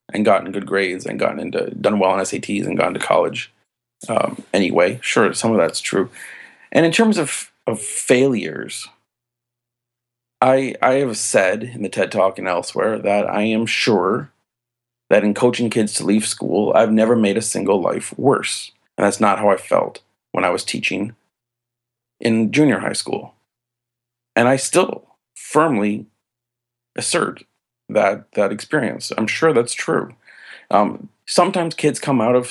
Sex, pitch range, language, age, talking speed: male, 105-120 Hz, English, 40-59, 160 wpm